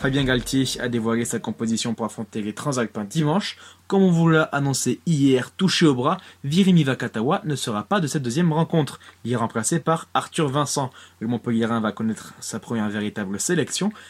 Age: 20-39